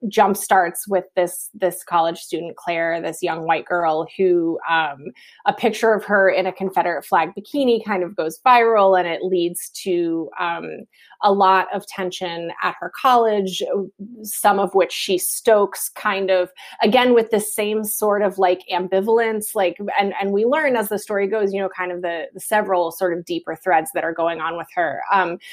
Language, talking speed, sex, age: English, 190 wpm, female, 20-39